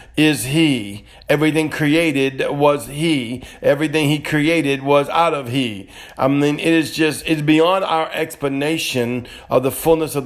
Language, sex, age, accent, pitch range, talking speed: English, male, 50-69, American, 120-150 Hz, 150 wpm